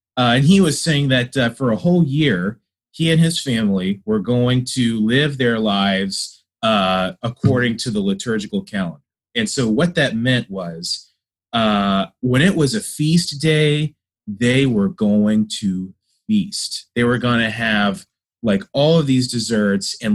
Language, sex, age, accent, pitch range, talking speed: English, male, 30-49, American, 110-155 Hz, 165 wpm